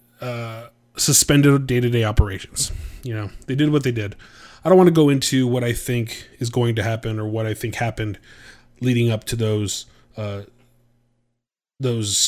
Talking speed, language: 170 wpm, English